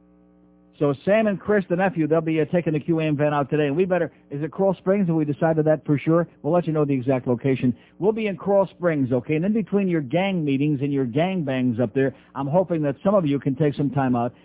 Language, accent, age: English, American, 50-69